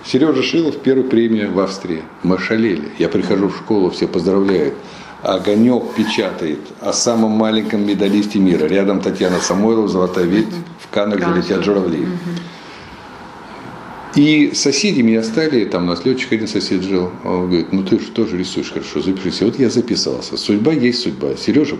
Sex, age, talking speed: male, 50-69, 155 wpm